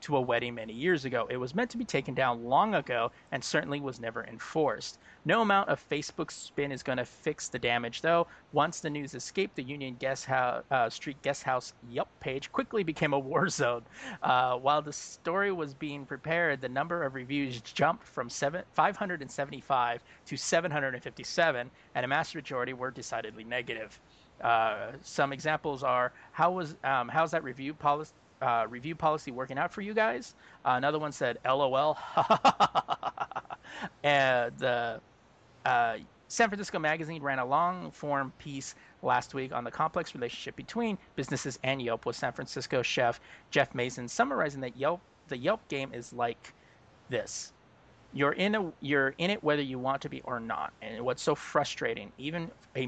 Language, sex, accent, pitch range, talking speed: English, male, American, 125-160 Hz, 175 wpm